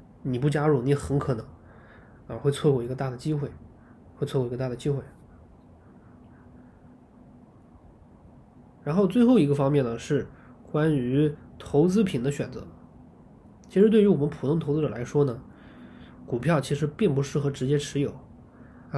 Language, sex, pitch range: Chinese, male, 120-155 Hz